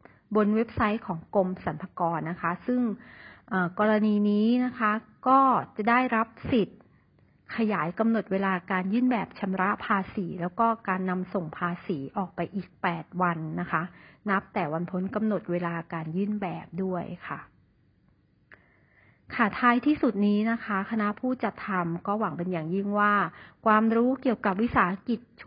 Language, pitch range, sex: Thai, 180-225 Hz, female